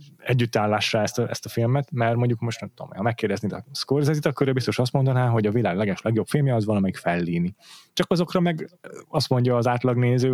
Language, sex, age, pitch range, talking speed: Hungarian, male, 30-49, 105-125 Hz, 205 wpm